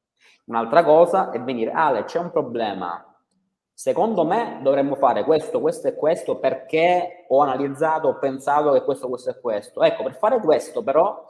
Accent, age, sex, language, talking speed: native, 30-49, male, Italian, 165 wpm